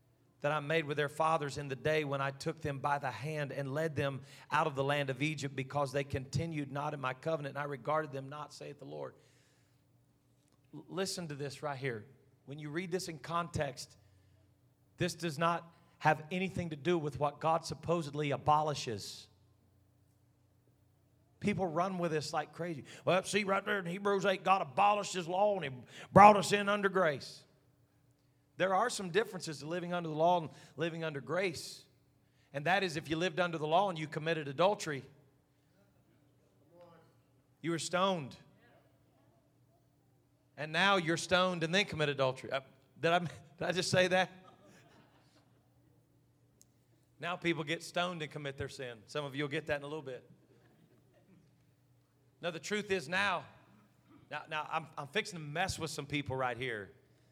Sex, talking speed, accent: male, 175 wpm, American